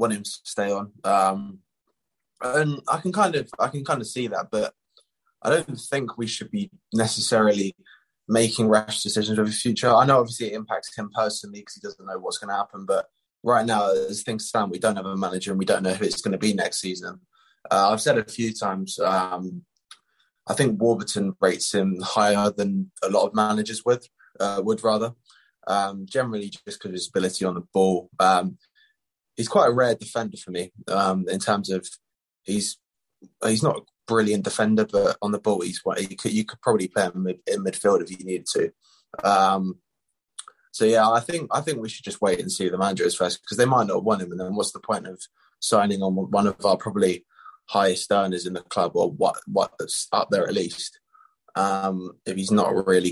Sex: male